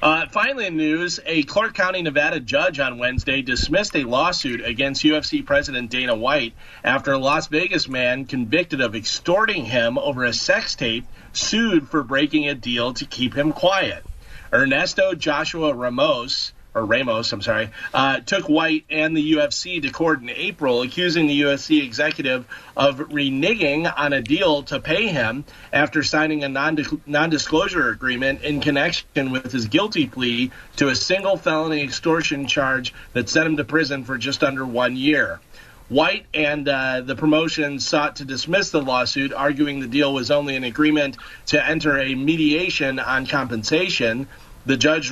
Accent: American